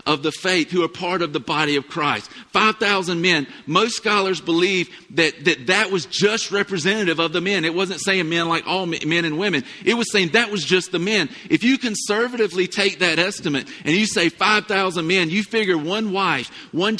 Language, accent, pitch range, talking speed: English, American, 180-225 Hz, 205 wpm